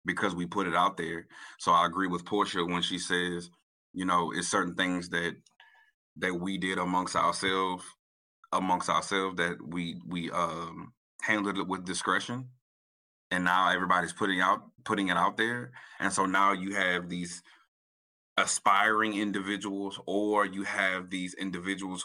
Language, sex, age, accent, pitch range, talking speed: English, male, 30-49, American, 90-105 Hz, 155 wpm